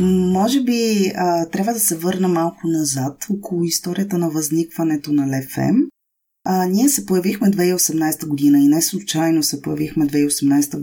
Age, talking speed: 20-39, 155 wpm